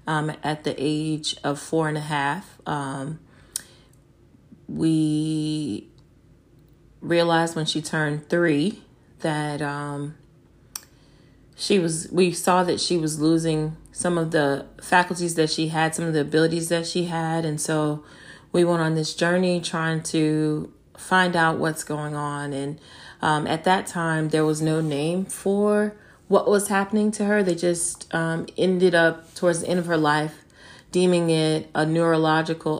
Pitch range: 150-170 Hz